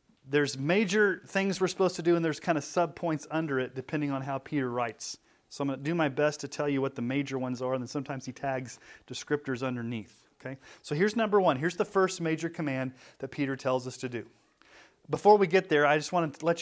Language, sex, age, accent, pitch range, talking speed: English, male, 30-49, American, 130-165 Hz, 240 wpm